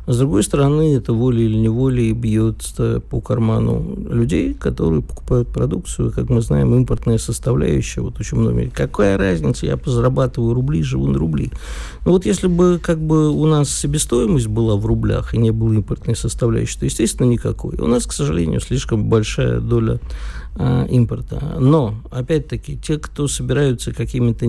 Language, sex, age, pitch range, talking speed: Russian, male, 50-69, 110-130 Hz, 155 wpm